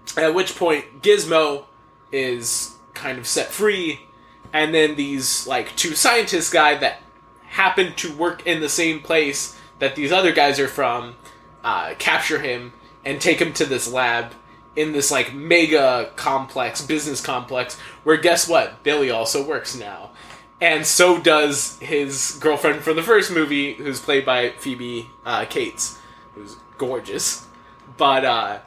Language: English